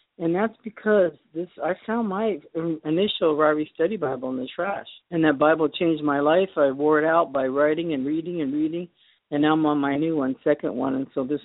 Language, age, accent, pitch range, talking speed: English, 50-69, American, 140-170 Hz, 220 wpm